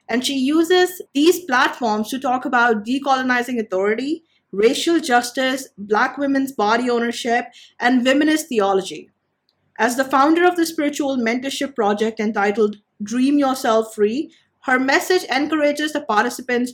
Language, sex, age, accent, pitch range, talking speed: English, female, 20-39, Indian, 220-285 Hz, 130 wpm